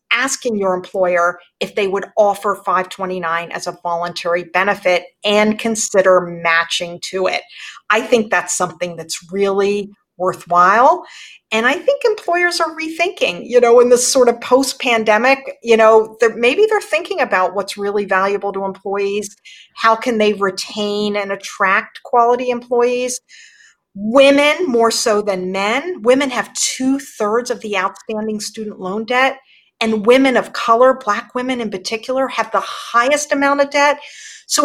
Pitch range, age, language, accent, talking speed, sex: 190-255 Hz, 50-69, English, American, 150 wpm, female